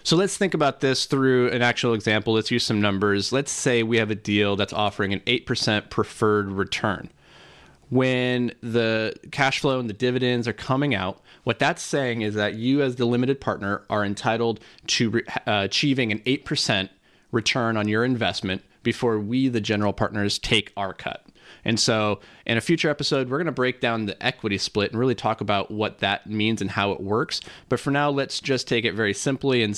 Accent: American